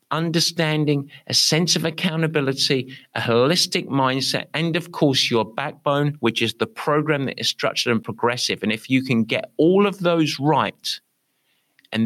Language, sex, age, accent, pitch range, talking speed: English, male, 50-69, British, 115-160 Hz, 160 wpm